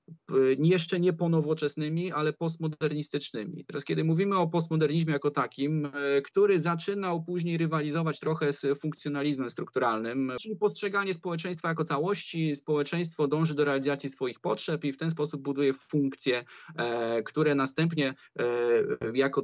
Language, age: Polish, 20-39